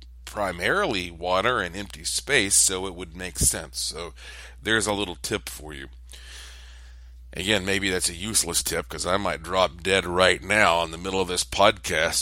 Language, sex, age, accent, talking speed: English, male, 50-69, American, 175 wpm